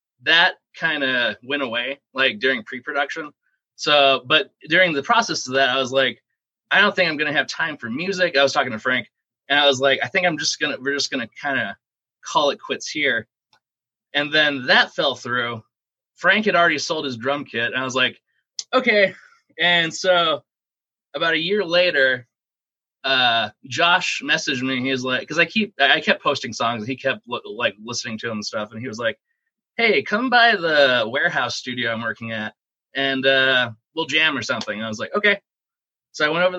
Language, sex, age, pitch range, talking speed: English, male, 20-39, 130-190 Hz, 210 wpm